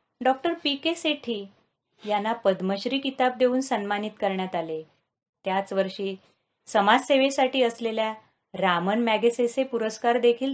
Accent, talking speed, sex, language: native, 110 wpm, female, Marathi